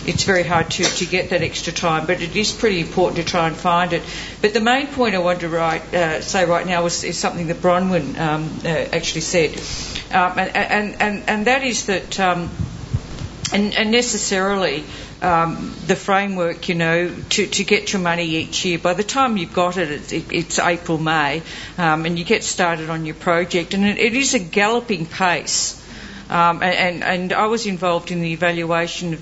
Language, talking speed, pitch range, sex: English, 195 wpm, 165-190 Hz, female